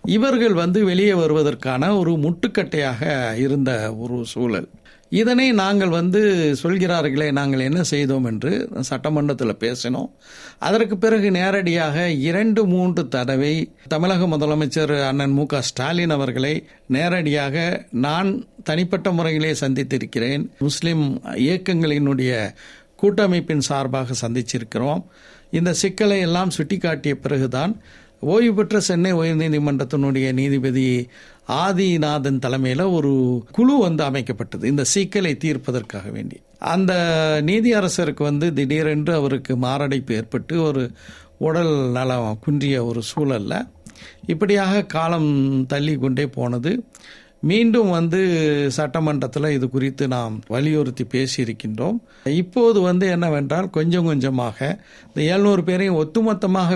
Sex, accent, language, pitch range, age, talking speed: male, native, Tamil, 135-180 Hz, 60-79, 100 wpm